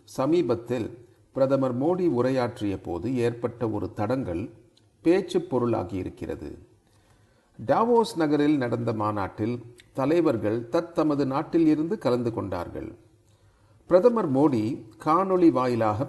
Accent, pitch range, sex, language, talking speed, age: native, 110-160 Hz, male, Tamil, 85 wpm, 40-59